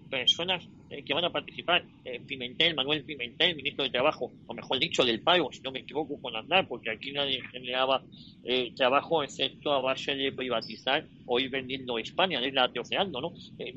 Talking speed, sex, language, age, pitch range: 210 wpm, male, Spanish, 40-59, 135-180 Hz